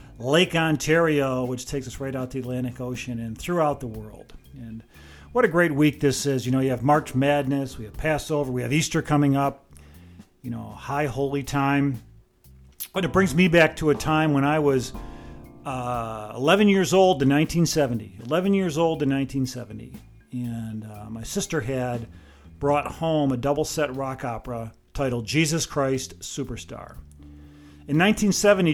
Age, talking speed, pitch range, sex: 40-59, 165 wpm, 120-150 Hz, male